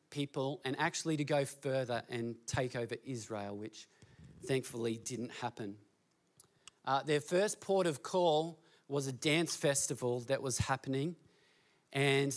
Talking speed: 135 wpm